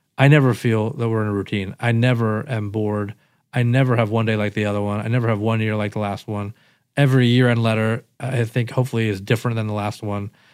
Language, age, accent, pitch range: English, 40-59, American, 110-140 Hz